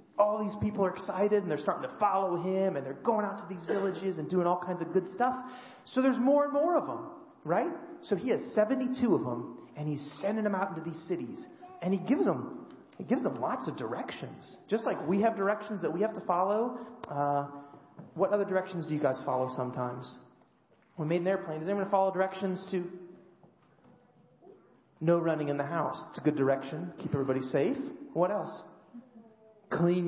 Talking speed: 205 wpm